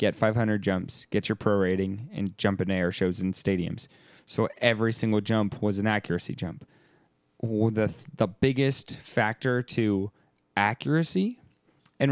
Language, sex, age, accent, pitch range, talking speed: English, male, 10-29, American, 100-120 Hz, 150 wpm